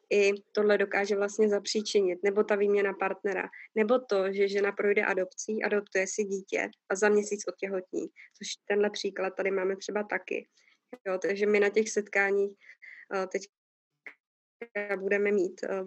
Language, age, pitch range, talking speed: Slovak, 20-39, 195-205 Hz, 155 wpm